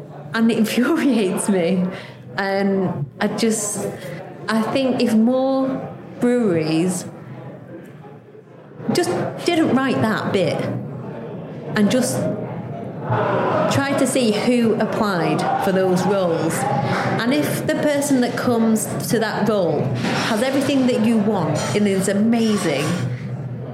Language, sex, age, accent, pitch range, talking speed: English, female, 30-49, British, 175-220 Hz, 110 wpm